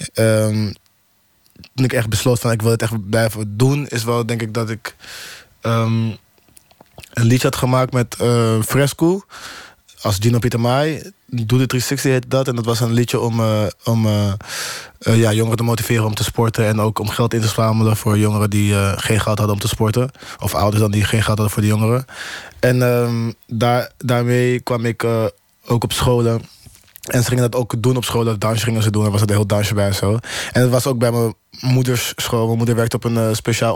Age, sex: 20-39, male